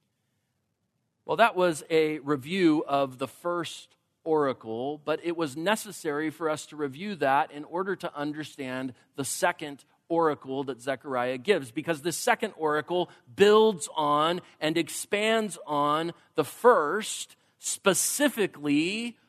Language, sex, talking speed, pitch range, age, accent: English, male, 125 wpm, 135-175 Hz, 40-59, American